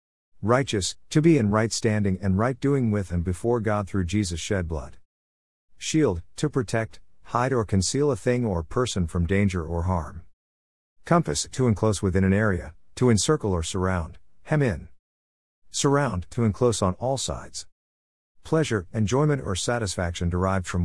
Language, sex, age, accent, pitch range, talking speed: English, male, 50-69, American, 85-120 Hz, 160 wpm